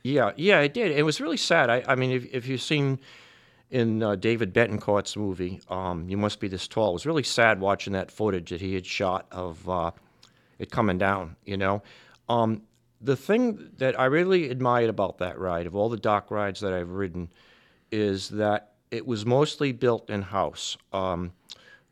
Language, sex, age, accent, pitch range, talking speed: English, male, 50-69, American, 95-125 Hz, 190 wpm